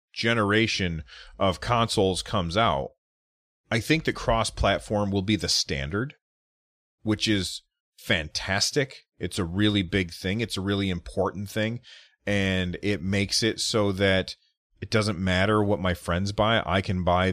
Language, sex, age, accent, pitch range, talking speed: English, male, 30-49, American, 90-110 Hz, 145 wpm